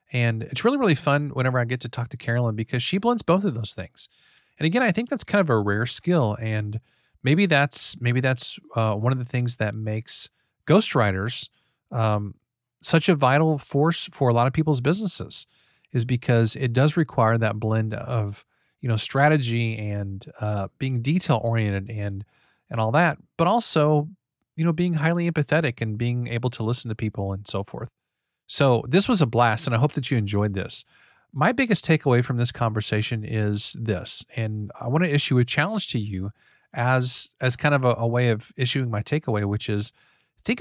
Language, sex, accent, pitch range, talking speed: English, male, American, 110-155 Hz, 195 wpm